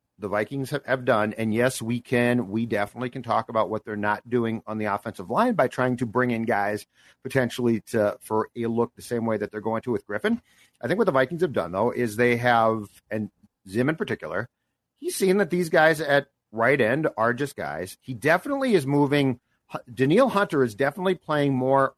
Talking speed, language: 215 wpm, English